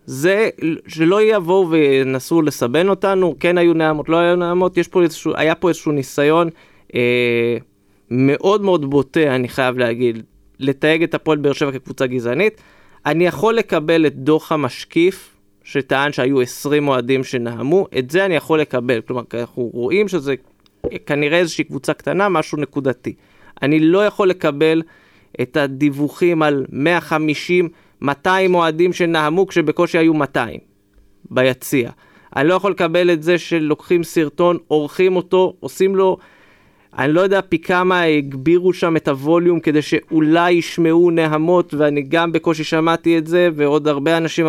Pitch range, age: 140-180 Hz, 20-39